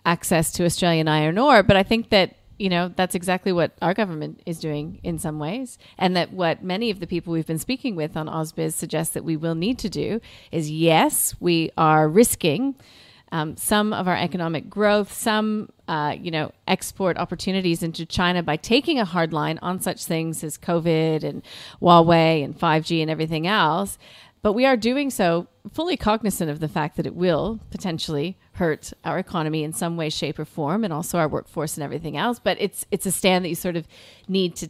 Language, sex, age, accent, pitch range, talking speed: English, female, 40-59, American, 160-205 Hz, 205 wpm